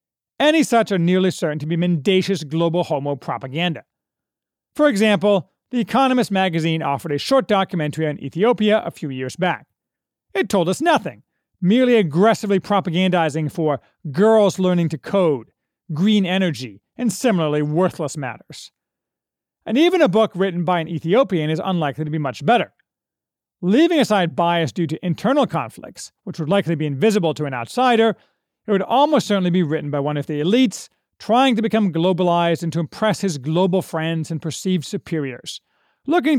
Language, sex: English, male